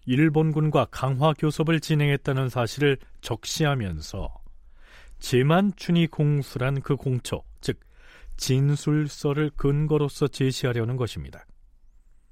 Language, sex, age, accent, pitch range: Korean, male, 40-59, native, 105-150 Hz